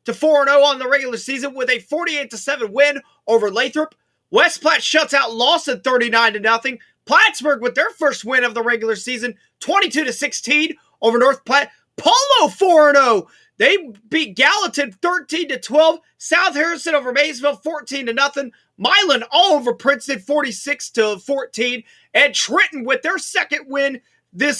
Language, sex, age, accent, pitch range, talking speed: English, male, 30-49, American, 245-310 Hz, 130 wpm